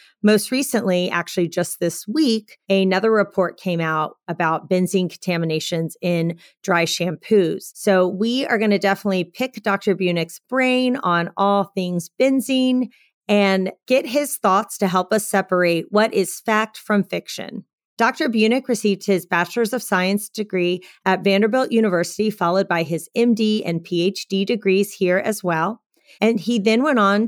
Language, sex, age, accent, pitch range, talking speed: English, female, 40-59, American, 180-225 Hz, 150 wpm